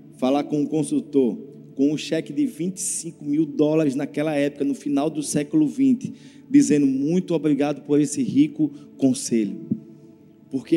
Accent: Brazilian